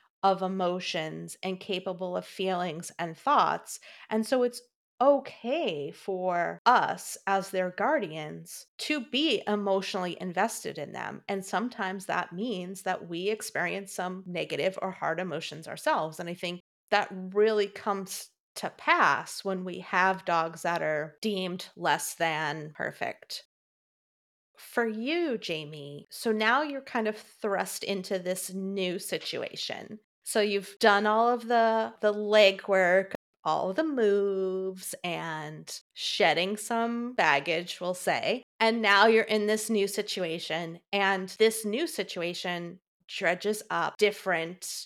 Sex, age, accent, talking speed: female, 30-49, American, 130 wpm